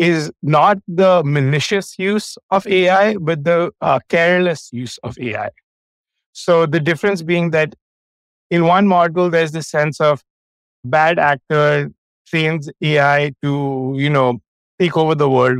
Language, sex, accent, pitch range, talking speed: English, male, Indian, 140-175 Hz, 140 wpm